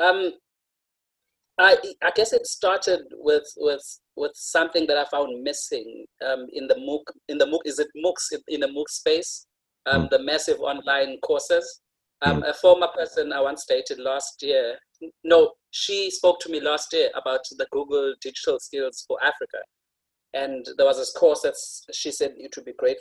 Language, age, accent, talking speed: English, 30-49, South African, 175 wpm